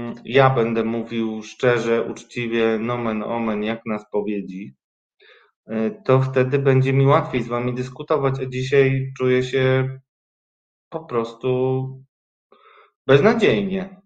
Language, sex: Polish, male